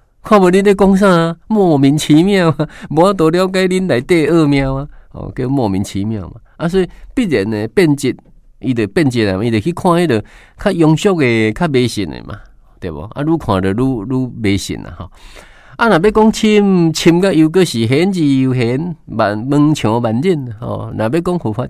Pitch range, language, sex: 105-160 Hz, Chinese, male